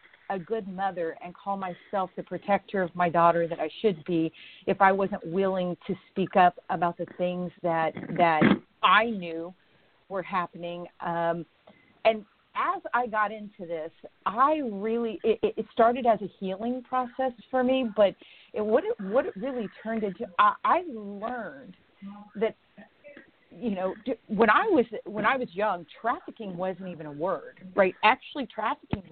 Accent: American